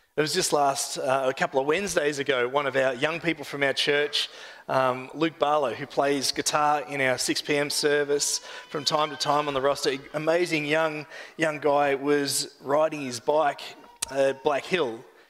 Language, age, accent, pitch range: English, 30-49, Australian, 125-160 Hz